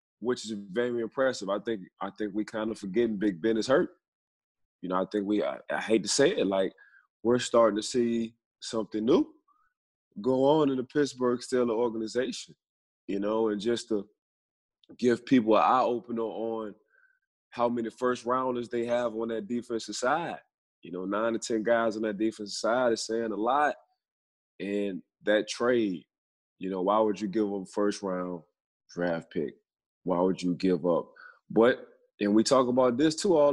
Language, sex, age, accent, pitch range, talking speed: English, male, 20-39, American, 105-125 Hz, 180 wpm